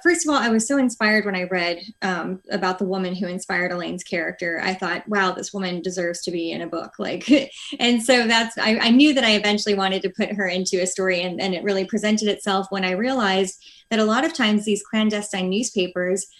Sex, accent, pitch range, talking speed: female, American, 190-230 Hz, 230 wpm